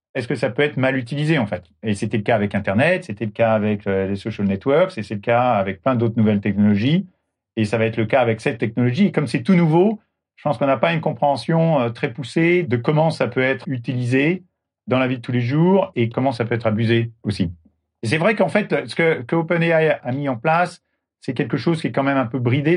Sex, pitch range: male, 115-155 Hz